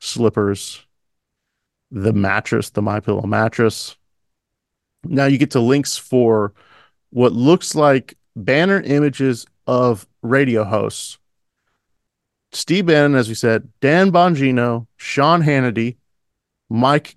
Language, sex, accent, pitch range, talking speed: English, male, American, 105-135 Hz, 110 wpm